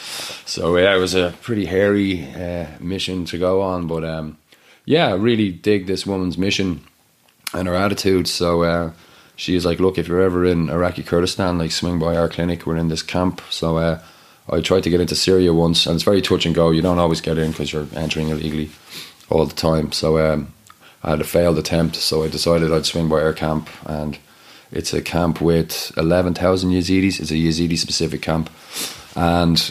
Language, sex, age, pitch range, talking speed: English, male, 30-49, 80-90 Hz, 200 wpm